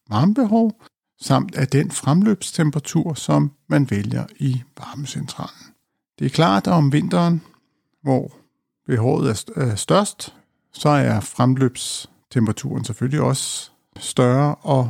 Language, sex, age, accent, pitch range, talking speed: Danish, male, 60-79, native, 120-155 Hz, 110 wpm